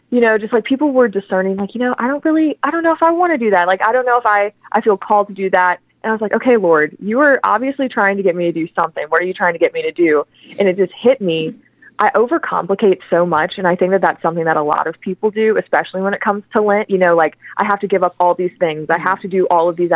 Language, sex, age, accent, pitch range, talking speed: English, female, 20-39, American, 170-215 Hz, 315 wpm